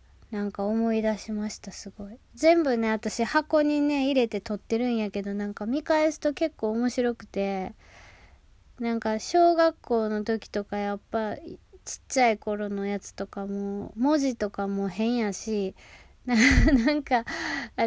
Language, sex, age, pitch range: Japanese, female, 20-39, 205-265 Hz